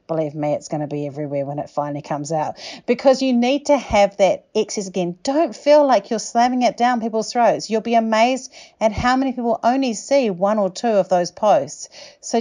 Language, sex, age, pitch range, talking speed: English, female, 40-59, 185-240 Hz, 220 wpm